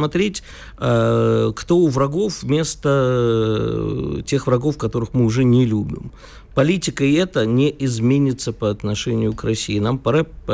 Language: Russian